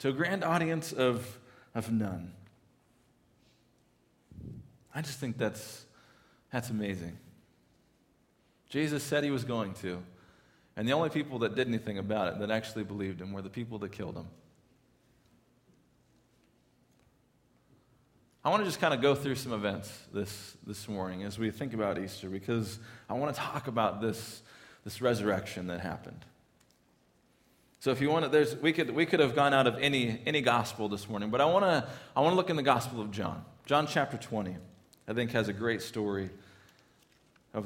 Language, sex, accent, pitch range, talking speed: English, male, American, 100-135 Hz, 170 wpm